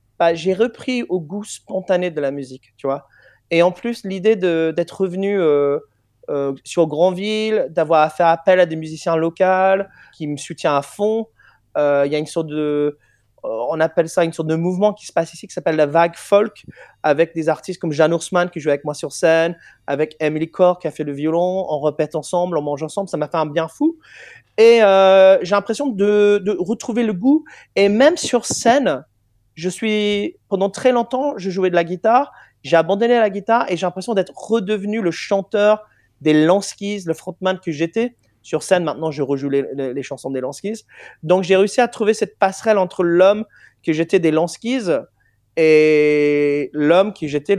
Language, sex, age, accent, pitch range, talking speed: French, male, 30-49, French, 155-200 Hz, 200 wpm